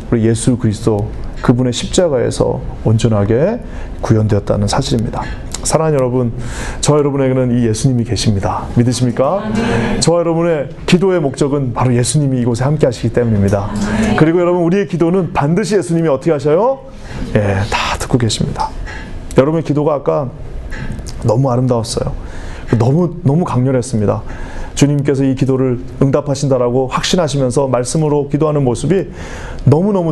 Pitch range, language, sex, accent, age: 115-155 Hz, Korean, male, native, 30-49